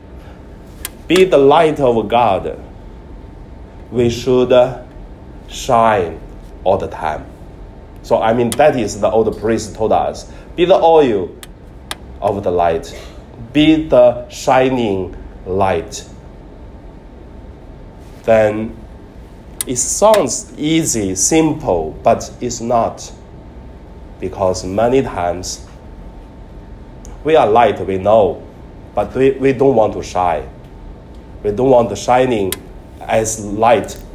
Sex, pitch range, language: male, 90-130 Hz, Chinese